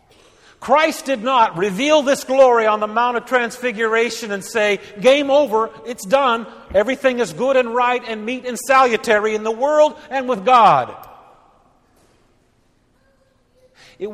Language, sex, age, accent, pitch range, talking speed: English, male, 50-69, American, 145-220 Hz, 140 wpm